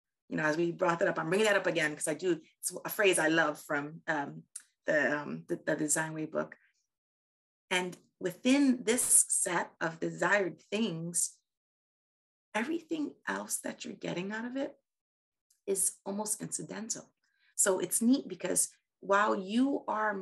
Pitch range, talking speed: 160-220 Hz, 160 wpm